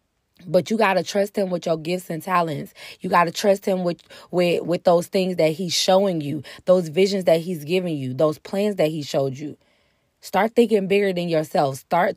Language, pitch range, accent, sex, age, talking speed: English, 170-210 Hz, American, female, 20-39, 210 wpm